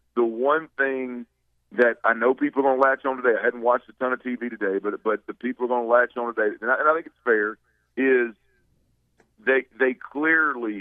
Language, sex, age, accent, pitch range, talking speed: English, male, 50-69, American, 110-130 Hz, 215 wpm